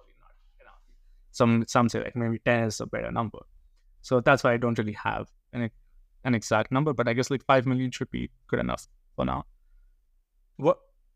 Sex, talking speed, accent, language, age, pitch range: male, 185 wpm, Indian, English, 20-39, 110-130 Hz